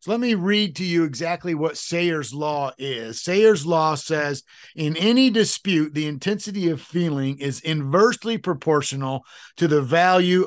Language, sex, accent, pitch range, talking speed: English, male, American, 135-170 Hz, 155 wpm